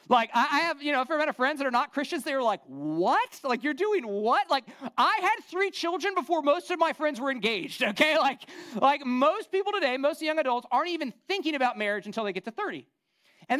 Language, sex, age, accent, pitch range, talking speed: English, male, 40-59, American, 200-290 Hz, 245 wpm